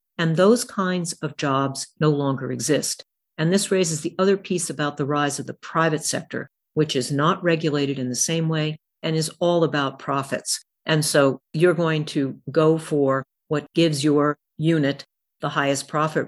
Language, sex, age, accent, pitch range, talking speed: English, female, 50-69, American, 140-165 Hz, 175 wpm